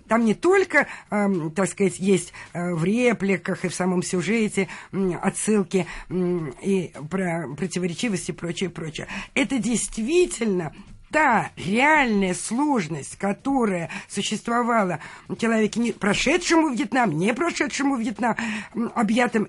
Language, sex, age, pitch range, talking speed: Russian, female, 50-69, 190-250 Hz, 105 wpm